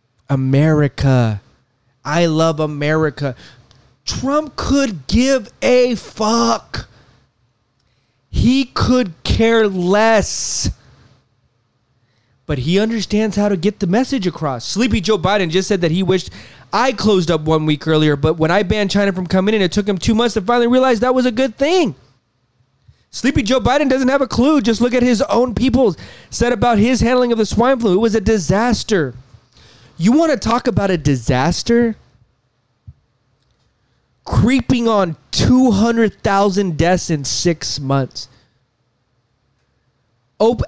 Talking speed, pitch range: 145 wpm, 140-225 Hz